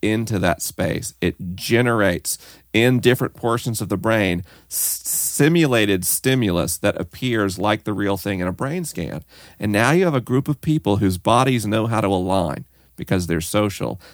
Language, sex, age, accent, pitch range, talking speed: English, male, 40-59, American, 95-115 Hz, 170 wpm